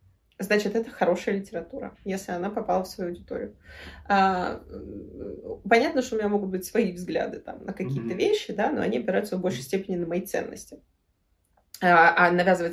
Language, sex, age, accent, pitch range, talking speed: Russian, female, 20-39, native, 185-230 Hz, 160 wpm